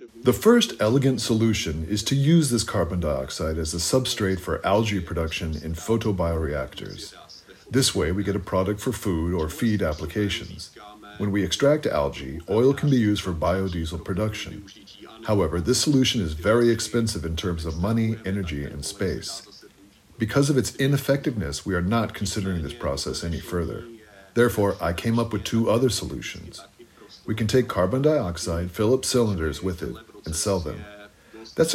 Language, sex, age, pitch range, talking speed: Czech, male, 40-59, 90-115 Hz, 165 wpm